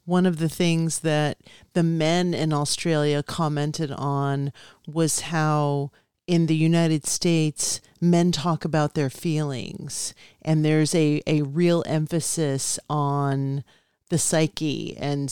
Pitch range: 145-175 Hz